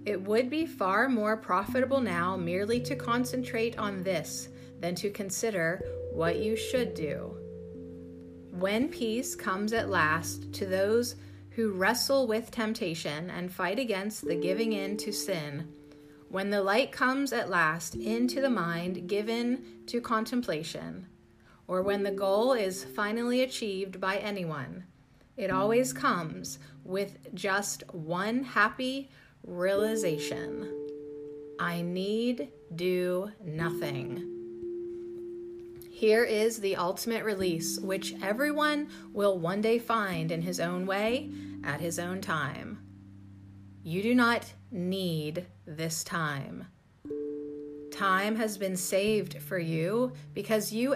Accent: American